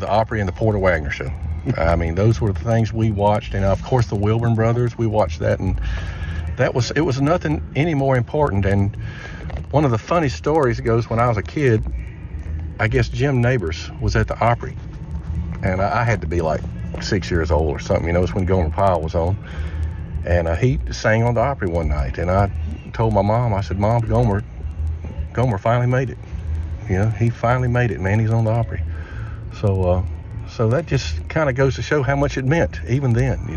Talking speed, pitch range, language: 220 wpm, 80-115 Hz, English